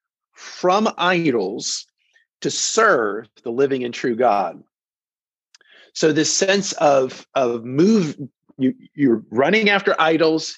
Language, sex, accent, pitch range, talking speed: English, male, American, 125-185 Hz, 115 wpm